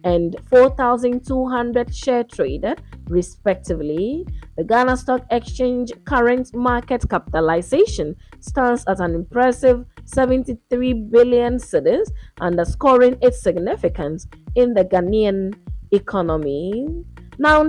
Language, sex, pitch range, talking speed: English, female, 195-255 Hz, 90 wpm